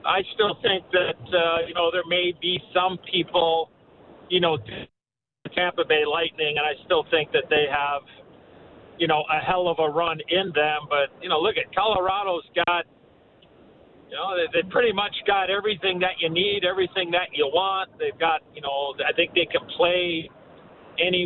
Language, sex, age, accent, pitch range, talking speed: English, male, 50-69, American, 160-190 Hz, 185 wpm